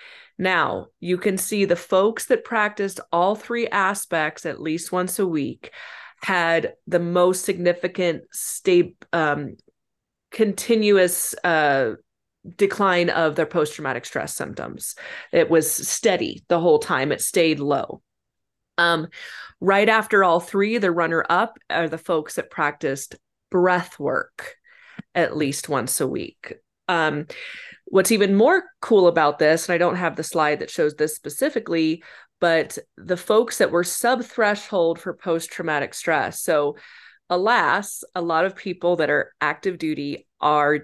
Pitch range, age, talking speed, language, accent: 160-205 Hz, 30-49, 140 wpm, English, American